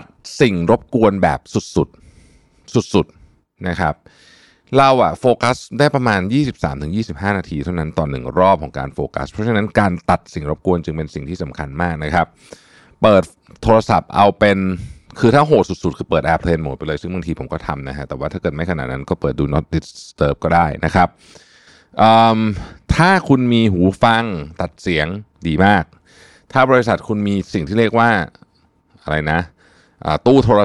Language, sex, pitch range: Thai, male, 85-115 Hz